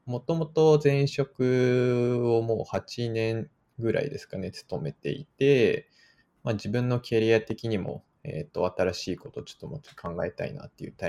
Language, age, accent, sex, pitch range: Japanese, 20-39, native, male, 105-145 Hz